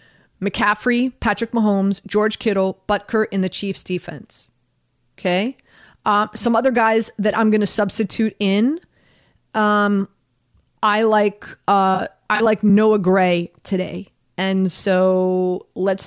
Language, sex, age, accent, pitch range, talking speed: English, female, 30-49, American, 180-215 Hz, 125 wpm